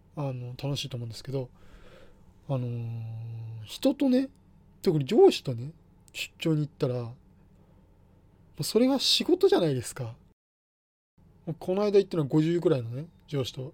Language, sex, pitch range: Japanese, male, 100-165 Hz